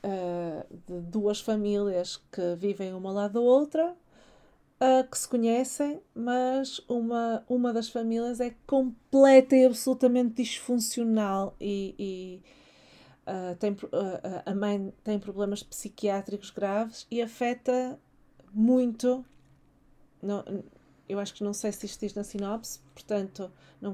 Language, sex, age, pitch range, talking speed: Portuguese, female, 40-59, 195-255 Hz, 115 wpm